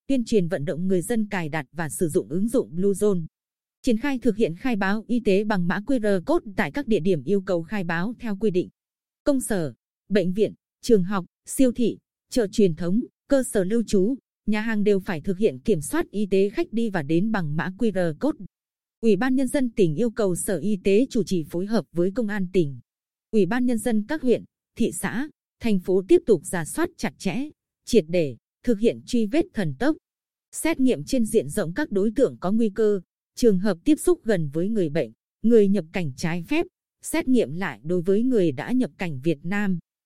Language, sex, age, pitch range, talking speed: Vietnamese, female, 20-39, 185-240 Hz, 220 wpm